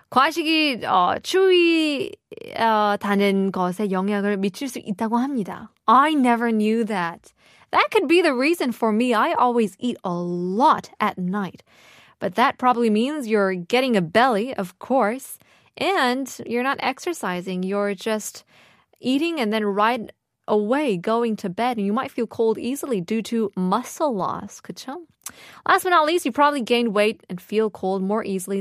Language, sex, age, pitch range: Korean, female, 20-39, 195-275 Hz